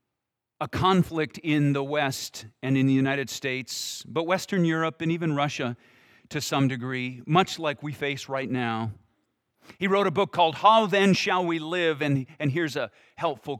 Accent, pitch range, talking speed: American, 125-165 Hz, 175 wpm